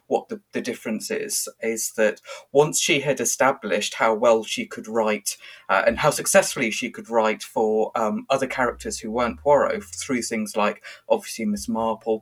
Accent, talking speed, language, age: British, 175 wpm, English, 30-49